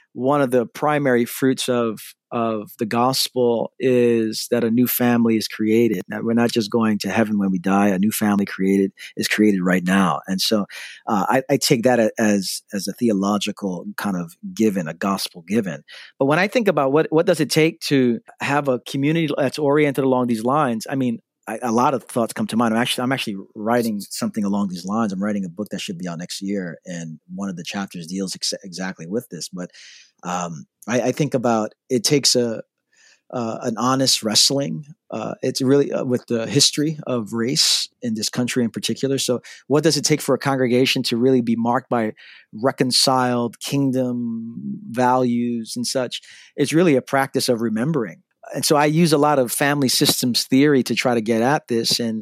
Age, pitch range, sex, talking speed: 40-59, 110-140 Hz, male, 200 wpm